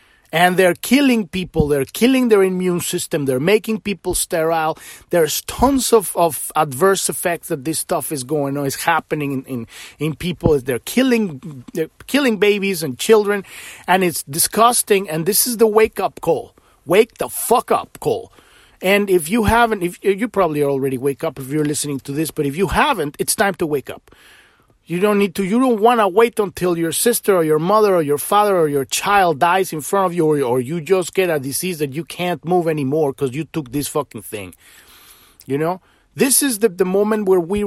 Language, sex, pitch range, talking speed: English, male, 155-210 Hz, 205 wpm